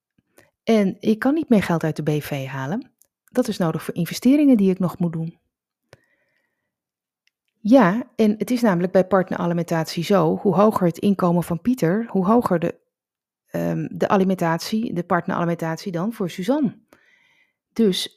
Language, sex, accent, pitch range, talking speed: Dutch, female, Dutch, 170-220 Hz, 150 wpm